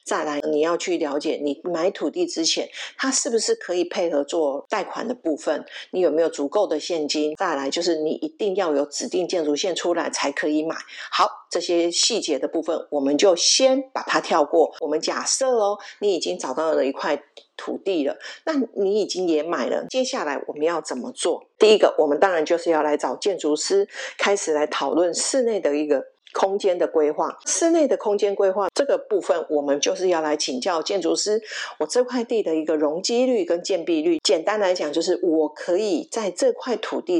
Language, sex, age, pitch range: Chinese, female, 50-69, 150-245 Hz